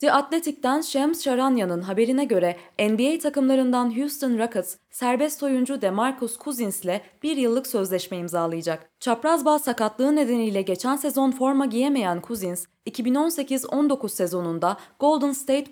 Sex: female